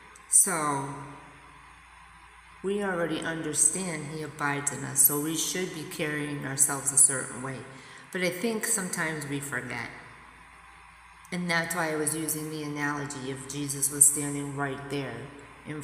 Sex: female